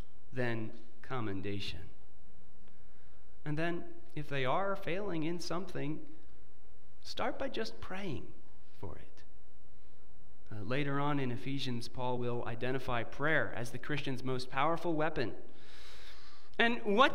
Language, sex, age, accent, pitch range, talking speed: English, male, 30-49, American, 125-190 Hz, 115 wpm